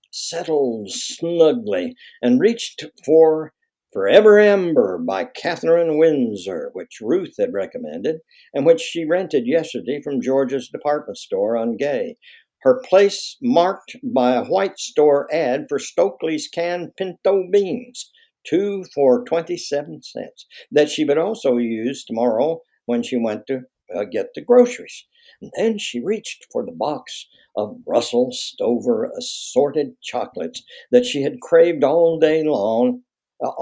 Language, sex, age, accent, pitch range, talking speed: English, male, 60-79, American, 155-250 Hz, 135 wpm